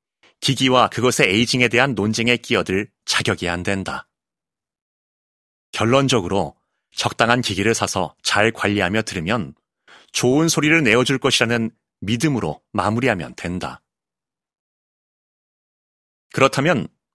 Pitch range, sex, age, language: 105-135 Hz, male, 30-49, Korean